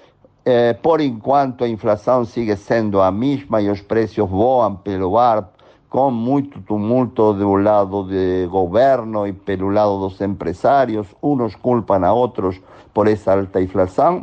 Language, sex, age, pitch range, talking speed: Portuguese, male, 50-69, 100-130 Hz, 150 wpm